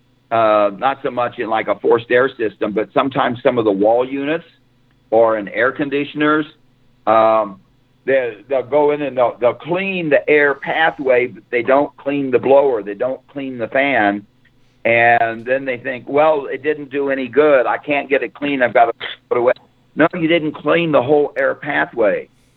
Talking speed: 190 wpm